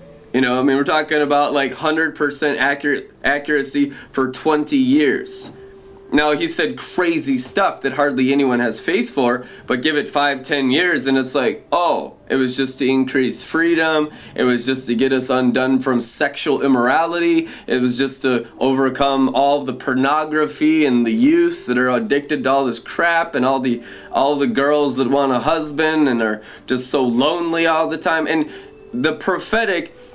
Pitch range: 130-165 Hz